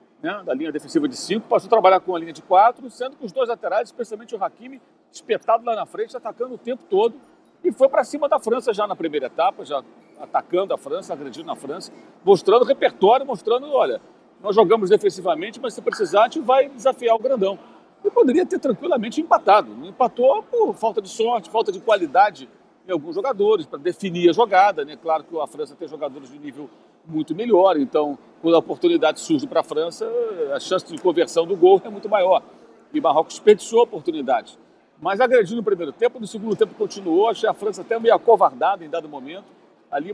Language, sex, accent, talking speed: Portuguese, male, Brazilian, 205 wpm